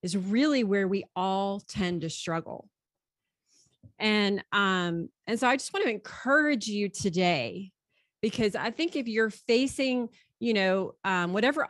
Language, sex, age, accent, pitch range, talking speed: English, female, 30-49, American, 185-235 Hz, 150 wpm